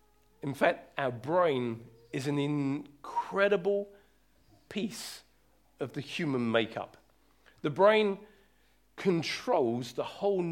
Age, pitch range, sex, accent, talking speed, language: 40-59, 130-185 Hz, male, British, 95 wpm, English